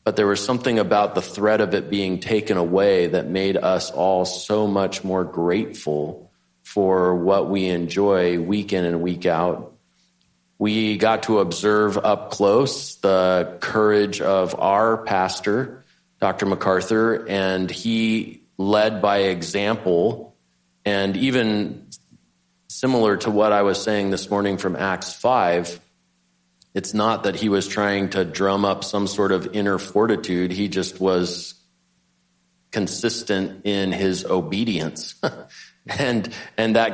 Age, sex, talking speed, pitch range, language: 40-59, male, 135 wpm, 90-105 Hz, English